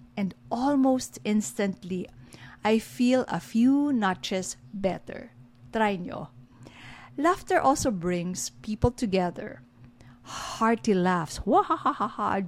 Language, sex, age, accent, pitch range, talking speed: English, female, 50-69, Filipino, 175-255 Hz, 90 wpm